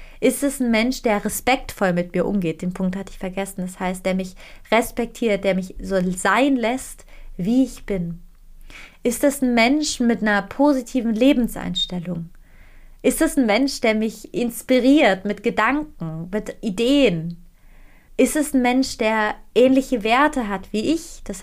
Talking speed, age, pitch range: 160 wpm, 30-49, 190-245 Hz